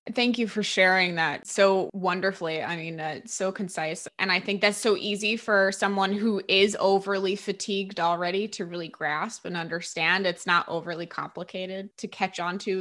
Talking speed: 180 wpm